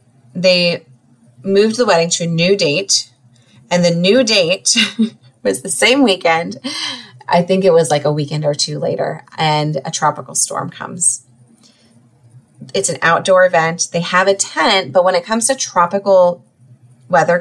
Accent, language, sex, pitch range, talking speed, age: American, English, female, 155-195 Hz, 160 wpm, 30-49